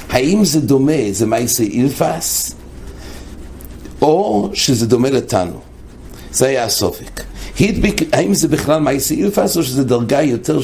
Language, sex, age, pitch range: English, male, 60-79, 110-150 Hz